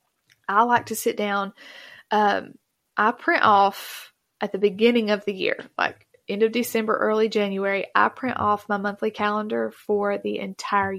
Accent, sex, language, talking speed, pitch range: American, female, English, 165 wpm, 200-240 Hz